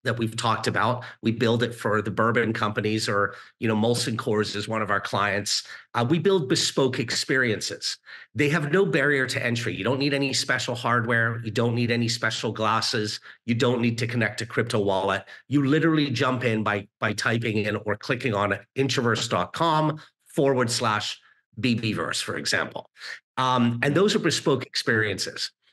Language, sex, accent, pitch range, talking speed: English, male, American, 115-145 Hz, 175 wpm